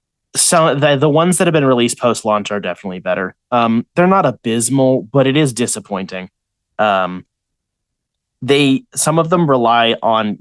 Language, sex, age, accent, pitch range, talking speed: English, male, 20-39, American, 110-135 Hz, 160 wpm